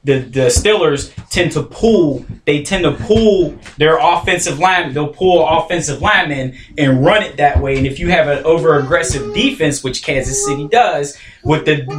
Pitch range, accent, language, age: 140-175 Hz, American, English, 20-39